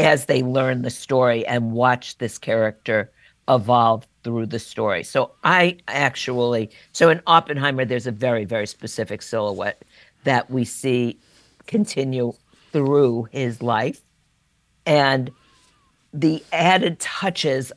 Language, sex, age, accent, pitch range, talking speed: English, female, 50-69, American, 125-160 Hz, 120 wpm